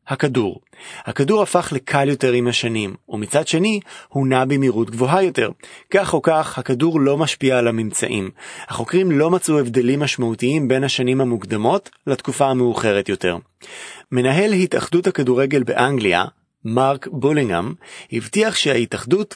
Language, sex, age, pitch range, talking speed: Hebrew, male, 30-49, 120-170 Hz, 125 wpm